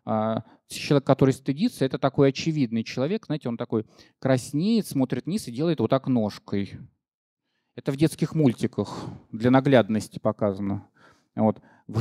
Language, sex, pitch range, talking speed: English, male, 115-135 Hz, 135 wpm